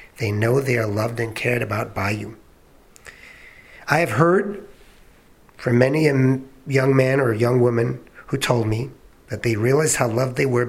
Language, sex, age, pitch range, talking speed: English, male, 50-69, 120-150 Hz, 180 wpm